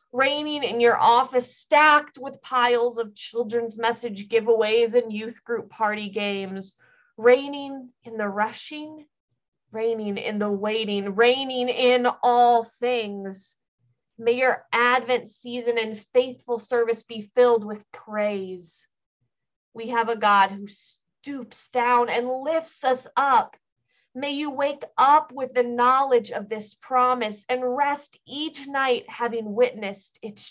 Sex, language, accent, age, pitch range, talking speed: female, English, American, 20-39, 210-255 Hz, 130 wpm